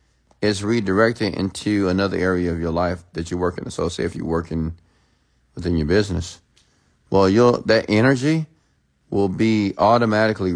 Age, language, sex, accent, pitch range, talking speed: 50-69, English, male, American, 85-105 Hz, 140 wpm